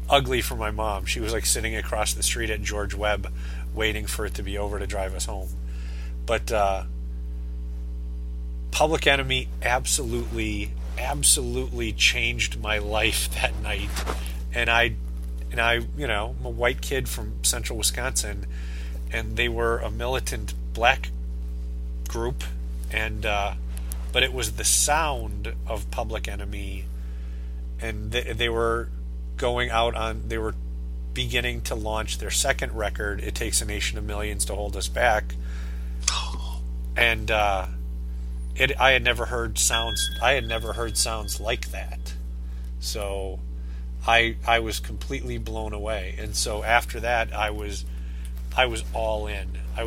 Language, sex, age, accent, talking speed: English, male, 30-49, American, 150 wpm